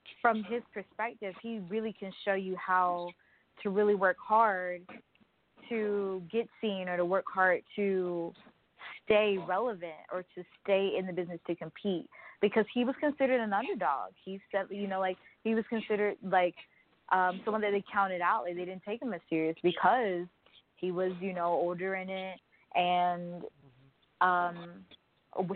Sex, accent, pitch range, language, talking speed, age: female, American, 175-210 Hz, English, 160 wpm, 20-39